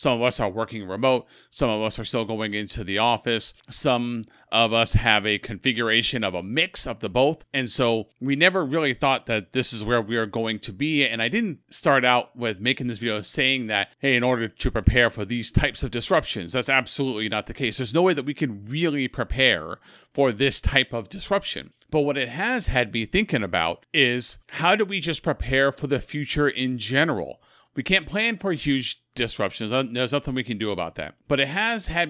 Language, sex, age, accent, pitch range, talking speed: English, male, 40-59, American, 115-150 Hz, 220 wpm